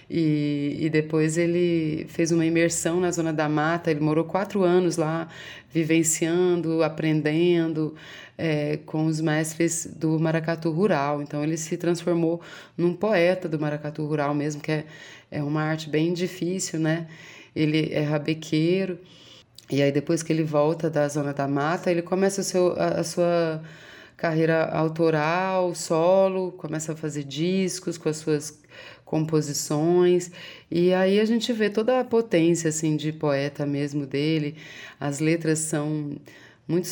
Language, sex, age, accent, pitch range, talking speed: Portuguese, female, 20-39, Brazilian, 155-175 Hz, 150 wpm